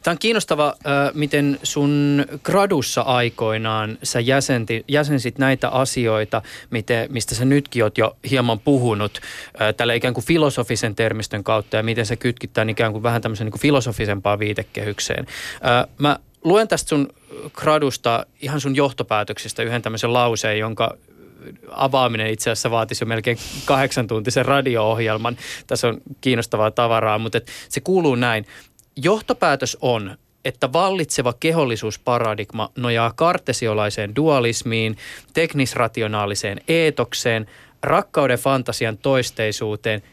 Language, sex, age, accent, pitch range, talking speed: Finnish, male, 20-39, native, 110-140 Hz, 115 wpm